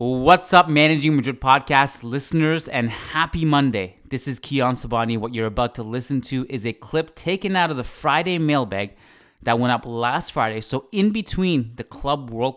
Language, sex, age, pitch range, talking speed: English, male, 30-49, 105-135 Hz, 185 wpm